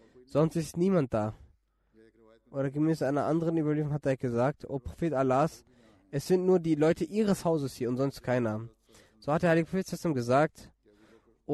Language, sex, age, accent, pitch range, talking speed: German, male, 20-39, German, 115-160 Hz, 175 wpm